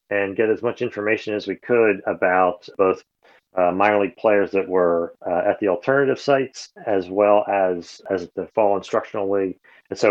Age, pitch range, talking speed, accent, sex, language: 40-59, 95-115 Hz, 185 wpm, American, male, English